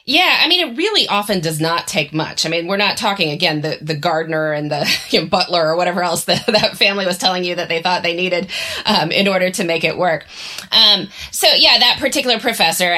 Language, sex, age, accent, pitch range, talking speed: English, female, 20-39, American, 155-190 Hz, 220 wpm